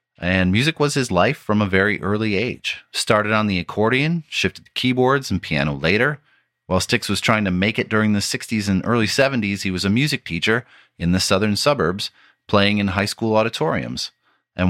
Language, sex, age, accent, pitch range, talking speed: English, male, 30-49, American, 90-115 Hz, 195 wpm